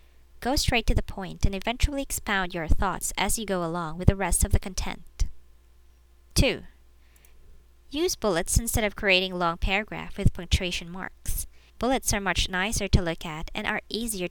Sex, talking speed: male, 170 wpm